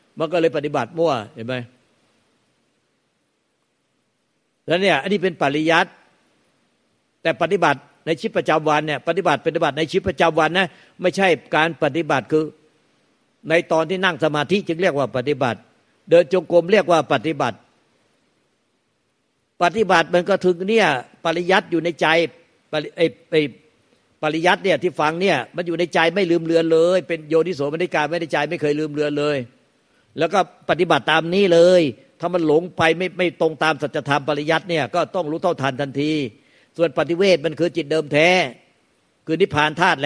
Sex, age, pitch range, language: male, 60-79, 150-175 Hz, Thai